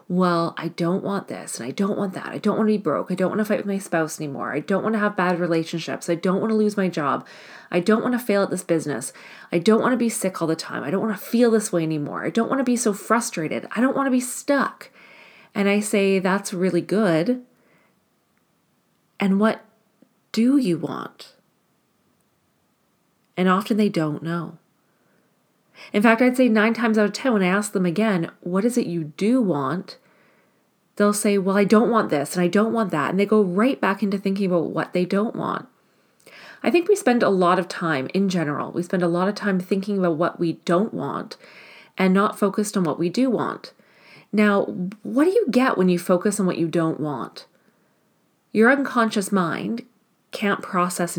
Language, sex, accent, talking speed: English, female, American, 215 wpm